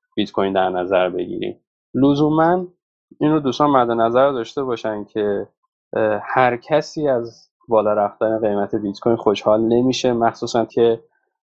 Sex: male